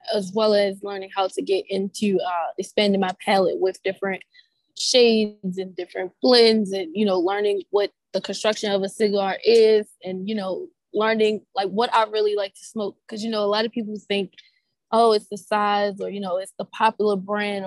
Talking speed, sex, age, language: 200 wpm, female, 20-39, English